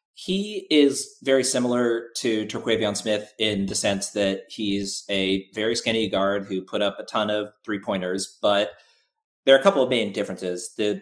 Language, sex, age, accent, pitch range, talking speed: English, male, 30-49, American, 95-120 Hz, 175 wpm